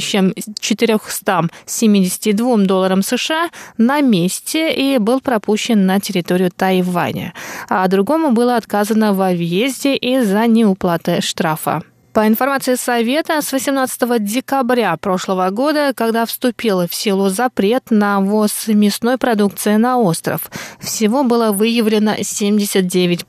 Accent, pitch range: native, 195-245 Hz